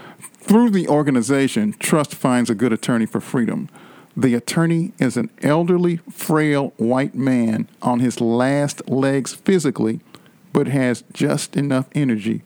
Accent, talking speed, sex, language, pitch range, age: American, 135 wpm, male, English, 125-170 Hz, 50-69